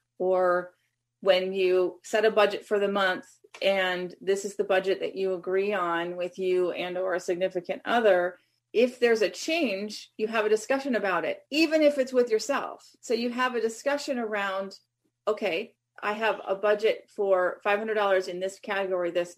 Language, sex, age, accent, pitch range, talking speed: English, female, 30-49, American, 180-220 Hz, 175 wpm